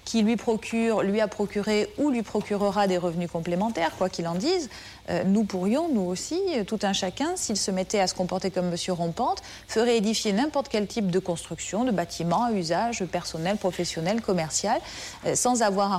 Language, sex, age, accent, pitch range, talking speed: French, female, 40-59, French, 180-230 Hz, 190 wpm